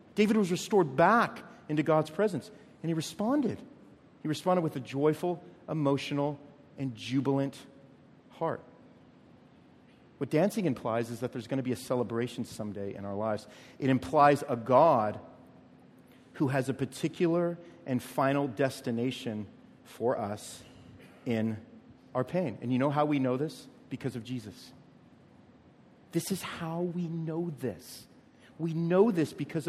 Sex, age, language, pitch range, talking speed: male, 40-59, English, 135-200 Hz, 140 wpm